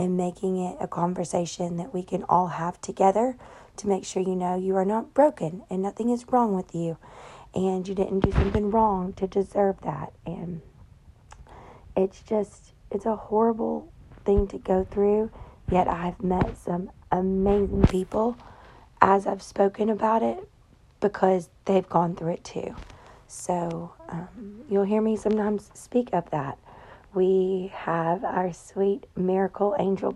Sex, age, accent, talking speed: female, 40-59, American, 155 wpm